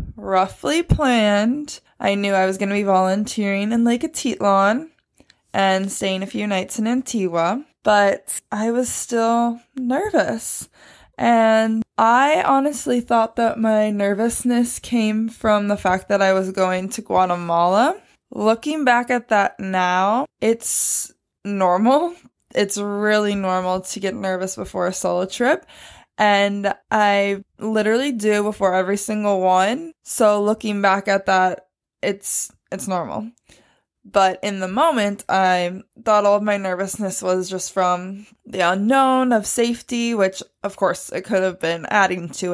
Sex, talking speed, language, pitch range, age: female, 140 wpm, English, 190-230 Hz, 20-39